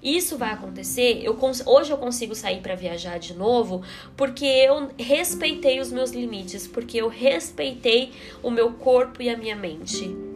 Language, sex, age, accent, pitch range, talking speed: Portuguese, female, 20-39, Brazilian, 195-250 Hz, 155 wpm